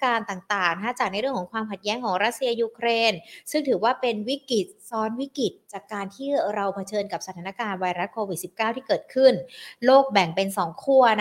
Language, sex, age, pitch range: Thai, female, 20-39, 195-255 Hz